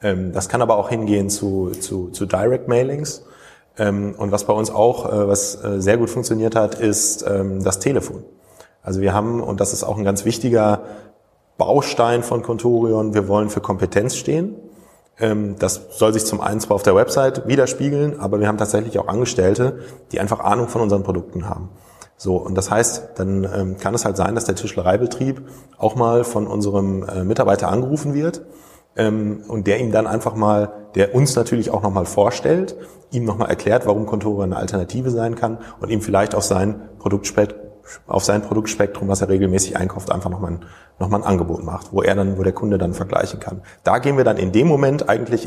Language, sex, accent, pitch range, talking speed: German, male, German, 95-115 Hz, 185 wpm